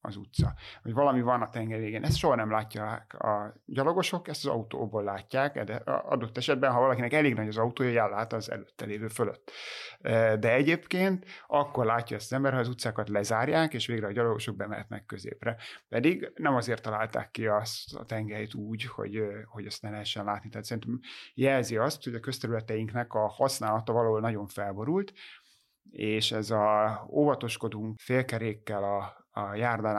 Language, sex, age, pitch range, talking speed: Hungarian, male, 30-49, 105-125 Hz, 165 wpm